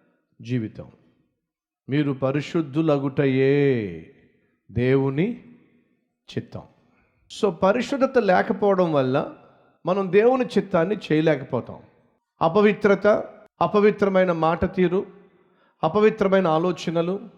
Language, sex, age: Telugu, male, 40-59